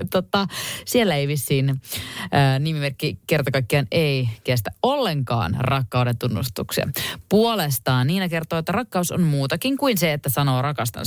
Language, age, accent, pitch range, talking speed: Finnish, 30-49, native, 120-185 Hz, 125 wpm